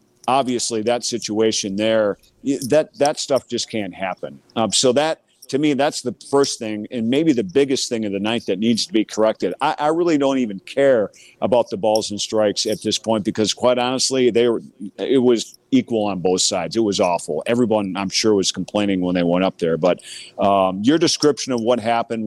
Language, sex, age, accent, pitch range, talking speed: English, male, 50-69, American, 105-125 Hz, 210 wpm